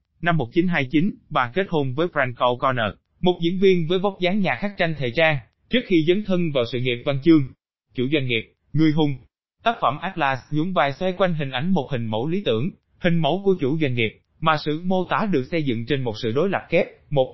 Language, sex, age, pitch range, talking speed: Vietnamese, male, 20-39, 125-175 Hz, 230 wpm